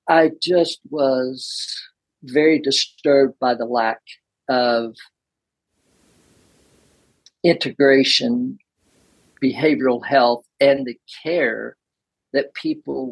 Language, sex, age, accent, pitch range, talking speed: English, male, 50-69, American, 125-170 Hz, 80 wpm